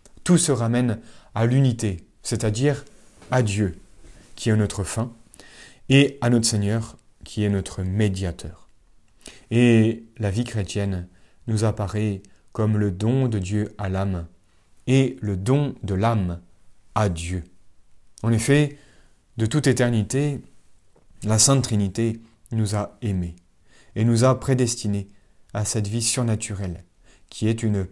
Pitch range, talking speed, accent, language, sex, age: 95-120 Hz, 135 wpm, French, French, male, 30-49